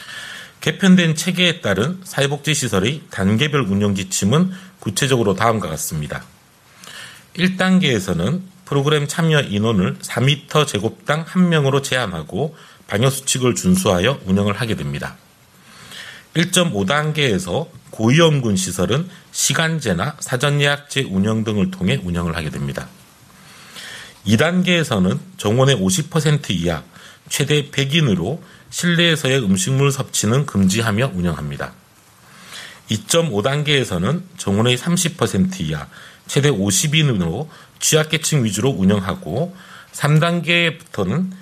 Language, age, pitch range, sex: Korean, 40-59, 110-170 Hz, male